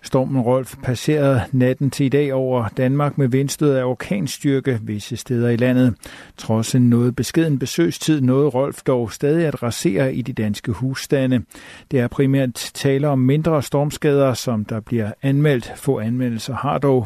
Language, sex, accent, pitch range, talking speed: Danish, male, native, 120-140 Hz, 165 wpm